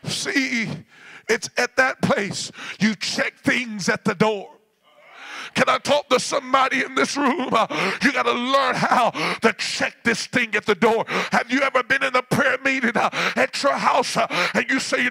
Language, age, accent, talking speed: English, 50-69, American, 195 wpm